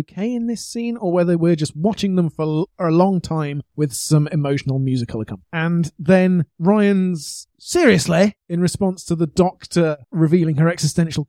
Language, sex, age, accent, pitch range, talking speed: English, male, 30-49, British, 150-195 Hz, 160 wpm